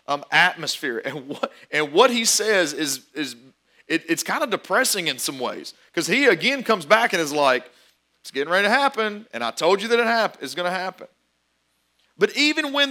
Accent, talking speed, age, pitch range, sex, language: American, 210 wpm, 40-59, 125-190 Hz, male, English